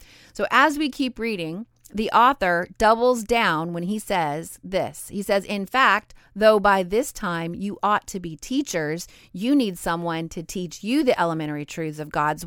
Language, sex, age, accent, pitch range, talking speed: English, female, 30-49, American, 170-230 Hz, 180 wpm